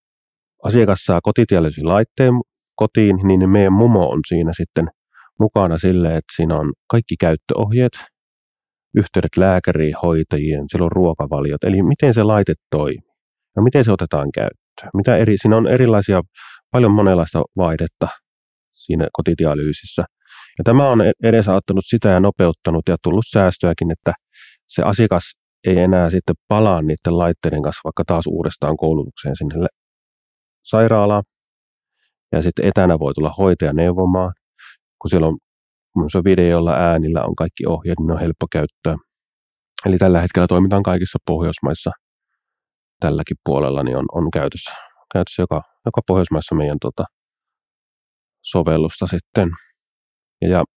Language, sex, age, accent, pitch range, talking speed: Finnish, male, 30-49, native, 80-100 Hz, 130 wpm